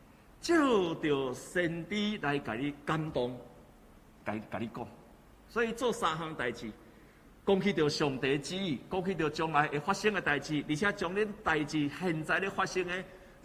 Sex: male